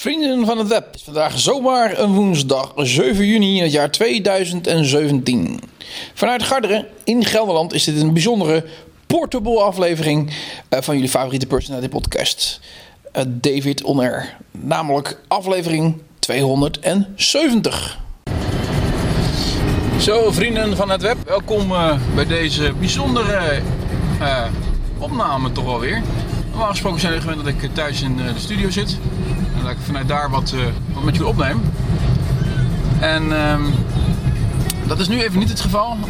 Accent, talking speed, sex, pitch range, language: Dutch, 135 wpm, male, 135-195 Hz, Dutch